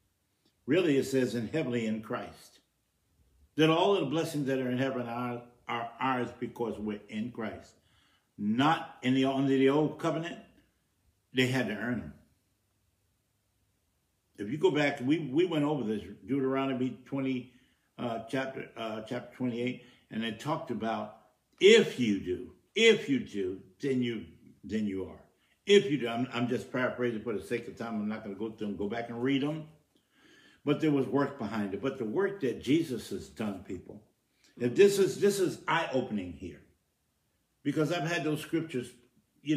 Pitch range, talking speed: 110-145 Hz, 180 wpm